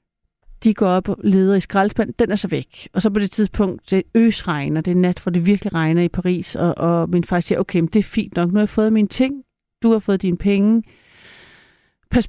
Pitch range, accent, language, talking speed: 170-210 Hz, native, Danish, 250 wpm